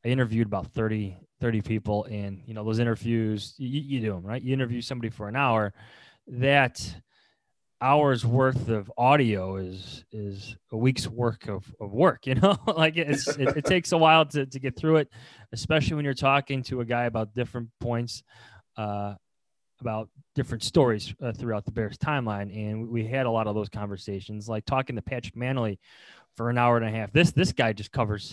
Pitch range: 110-135 Hz